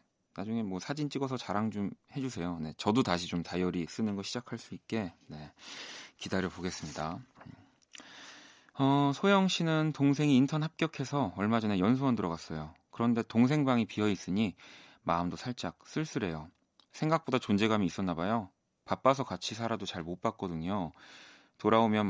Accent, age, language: native, 30-49, Korean